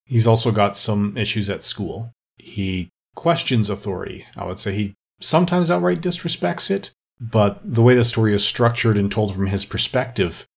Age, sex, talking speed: 30-49, male, 170 wpm